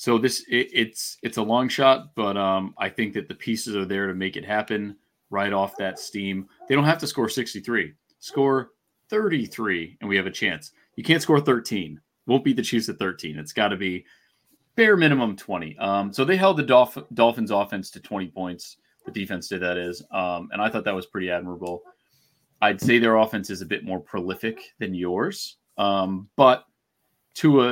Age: 30-49